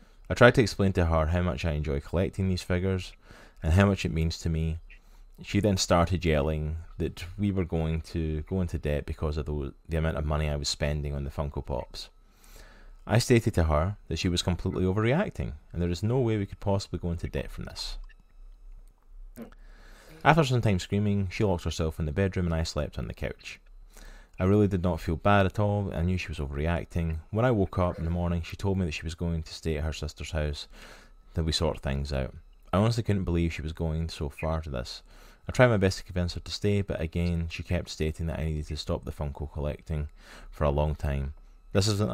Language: English